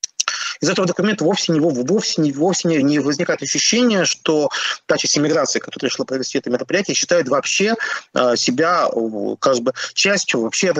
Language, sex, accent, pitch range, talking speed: Russian, male, native, 155-210 Hz, 155 wpm